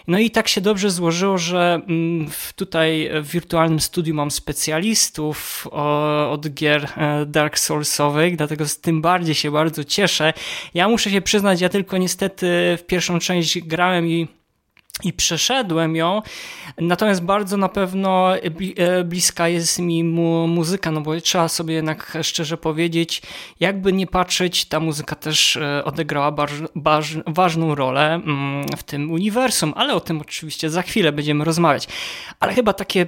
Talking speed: 140 wpm